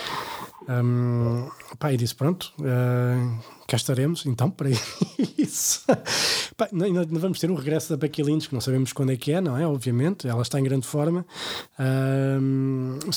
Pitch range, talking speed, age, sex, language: 130-150 Hz, 155 wpm, 20-39, male, Portuguese